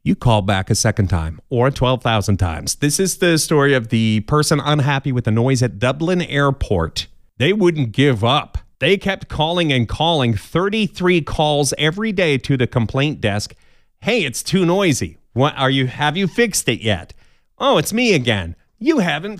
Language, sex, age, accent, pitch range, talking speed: English, male, 30-49, American, 115-165 Hz, 180 wpm